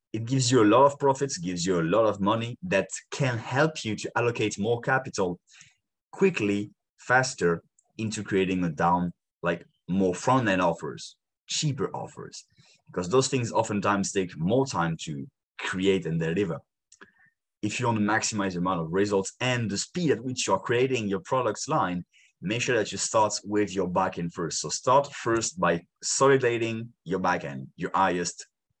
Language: English